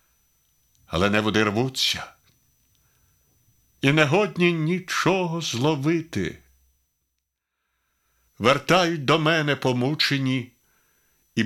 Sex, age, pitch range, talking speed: male, 60-79, 100-135 Hz, 75 wpm